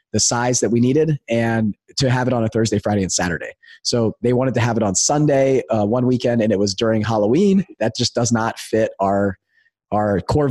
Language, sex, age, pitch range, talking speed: English, male, 30-49, 110-125 Hz, 225 wpm